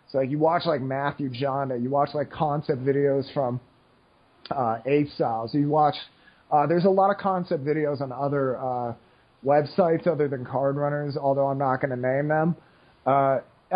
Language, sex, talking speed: English, male, 180 wpm